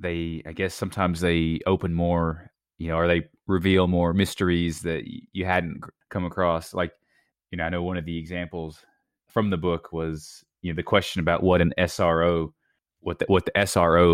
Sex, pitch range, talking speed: male, 80-95 Hz, 190 wpm